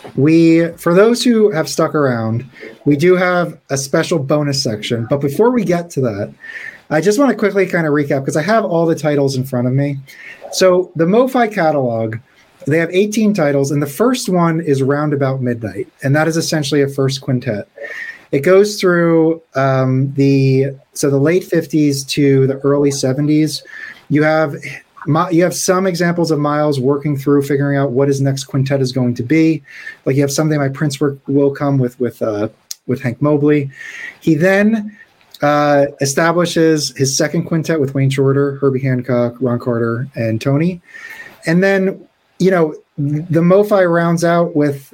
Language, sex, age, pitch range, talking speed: English, male, 30-49, 135-170 Hz, 180 wpm